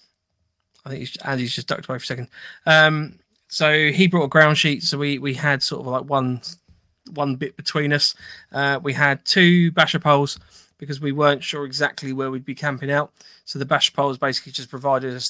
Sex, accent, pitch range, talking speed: male, British, 130-155 Hz, 205 wpm